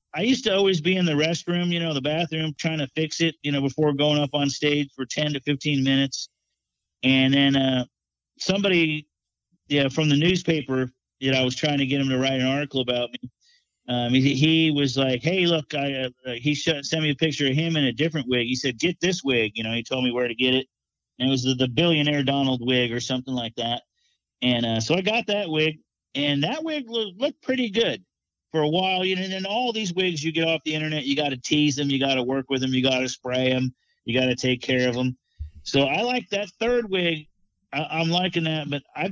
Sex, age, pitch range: male, 40-59, 135-185 Hz